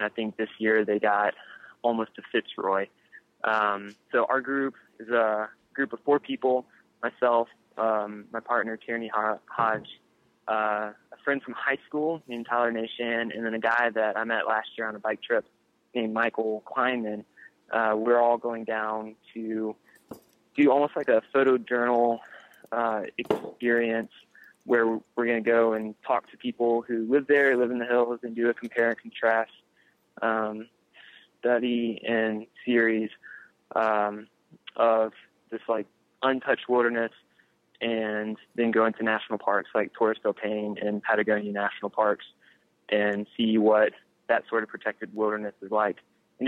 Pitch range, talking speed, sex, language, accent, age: 105-120 Hz, 160 wpm, male, English, American, 20-39